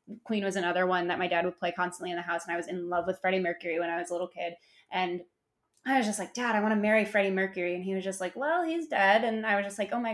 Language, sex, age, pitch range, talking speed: English, female, 20-39, 175-210 Hz, 320 wpm